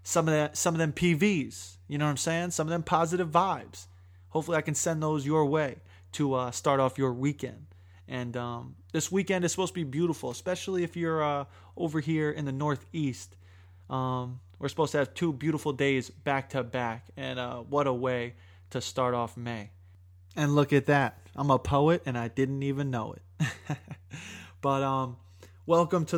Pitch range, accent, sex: 100-155 Hz, American, male